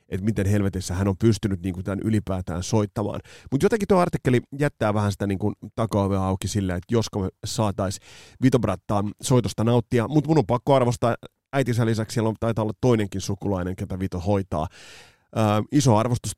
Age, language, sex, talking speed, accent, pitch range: 30-49, Finnish, male, 170 wpm, native, 95-115 Hz